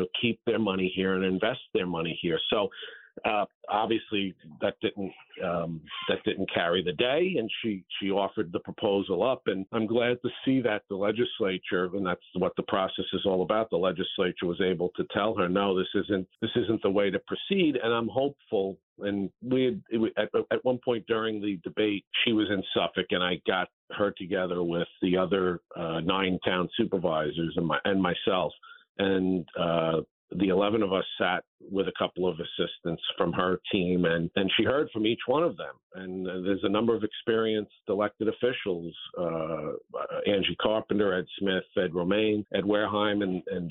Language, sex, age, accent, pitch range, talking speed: English, male, 50-69, American, 90-110 Hz, 190 wpm